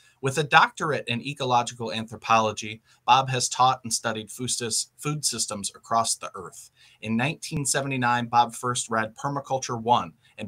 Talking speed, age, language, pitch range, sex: 135 wpm, 30-49, English, 110-135 Hz, male